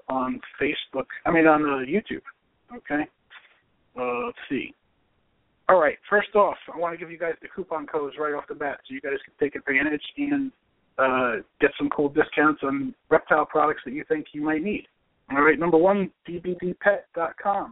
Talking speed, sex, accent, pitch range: 175 wpm, male, American, 150-190 Hz